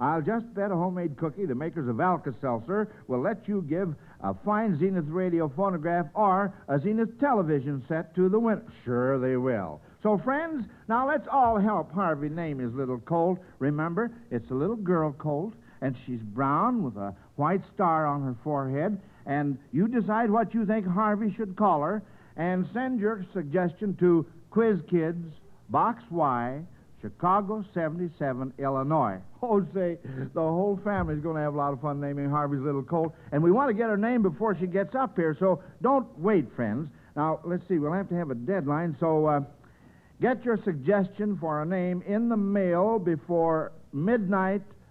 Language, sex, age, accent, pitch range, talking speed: English, male, 60-79, American, 145-205 Hz, 180 wpm